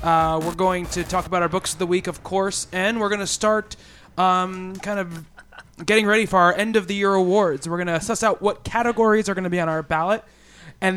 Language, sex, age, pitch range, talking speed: English, male, 20-39, 165-190 Hz, 245 wpm